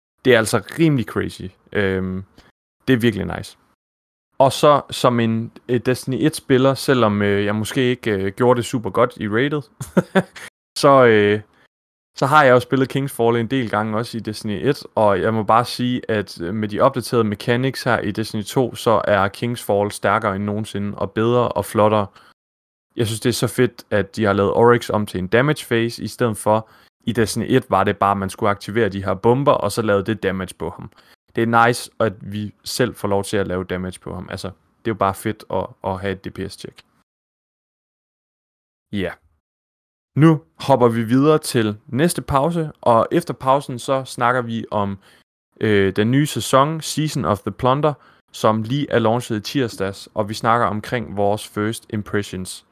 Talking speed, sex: 190 wpm, male